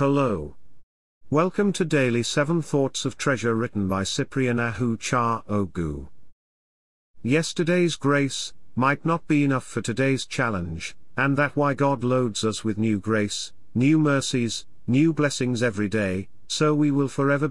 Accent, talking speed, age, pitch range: British, 145 wpm, 50-69, 105-145 Hz